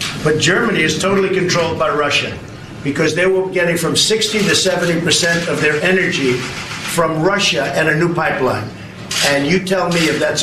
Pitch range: 150-180 Hz